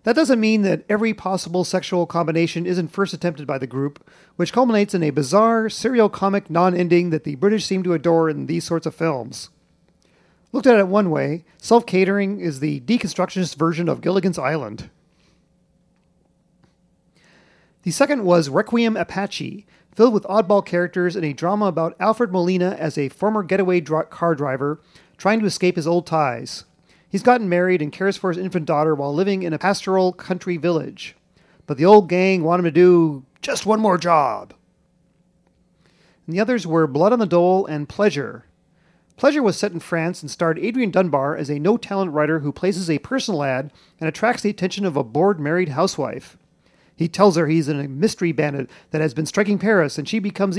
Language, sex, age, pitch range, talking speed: English, male, 40-59, 160-200 Hz, 180 wpm